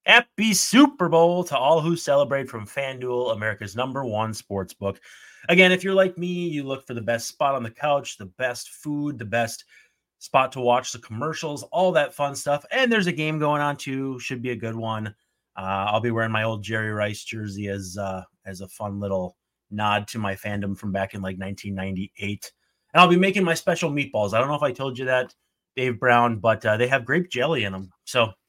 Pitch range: 110-155 Hz